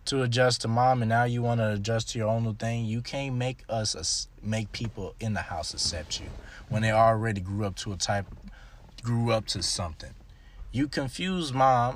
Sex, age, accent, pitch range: male, 20-39, American, 100-130 Hz